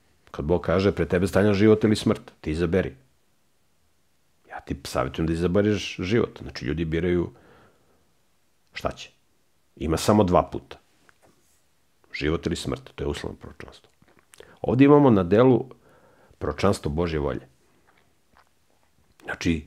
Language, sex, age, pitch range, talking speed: English, male, 50-69, 80-110 Hz, 125 wpm